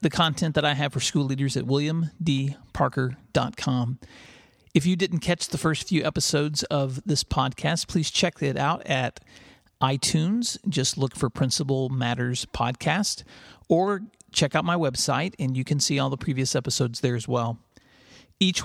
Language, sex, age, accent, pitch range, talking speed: English, male, 40-59, American, 135-165 Hz, 160 wpm